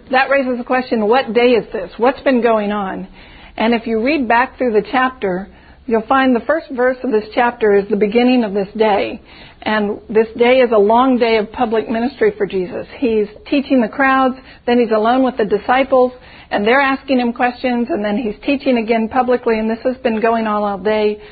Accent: American